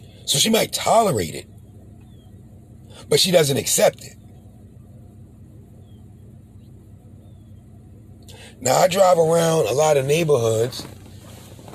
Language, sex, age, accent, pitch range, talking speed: English, male, 40-59, American, 105-125 Hz, 90 wpm